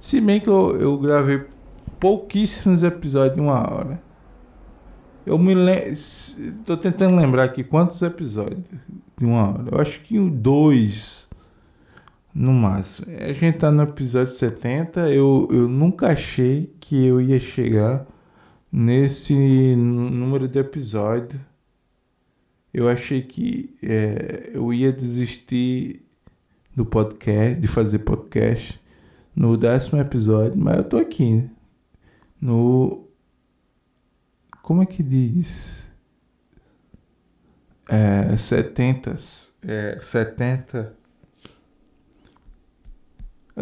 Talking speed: 105 wpm